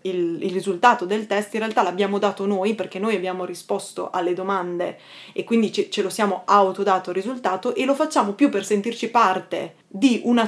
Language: Italian